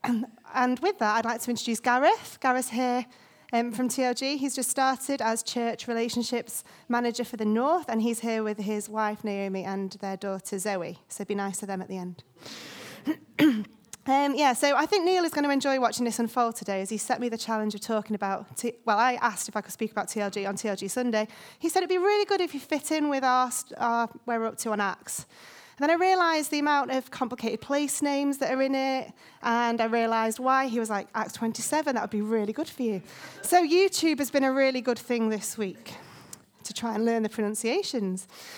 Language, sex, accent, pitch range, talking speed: English, female, British, 215-265 Hz, 220 wpm